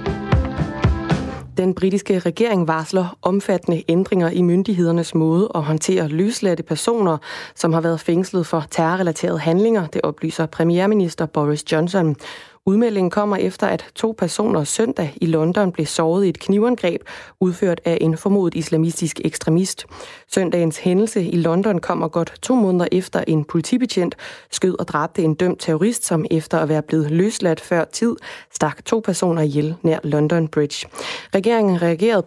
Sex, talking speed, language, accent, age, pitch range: female, 150 wpm, Danish, native, 20-39, 160-190 Hz